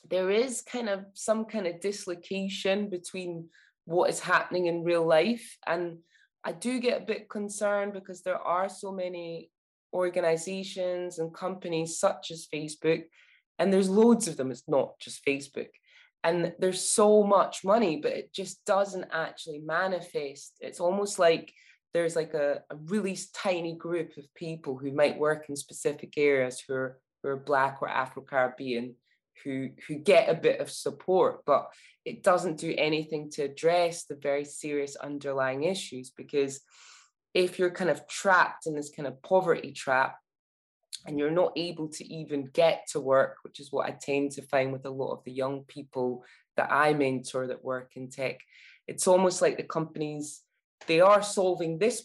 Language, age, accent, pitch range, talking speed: English, 20-39, British, 140-185 Hz, 170 wpm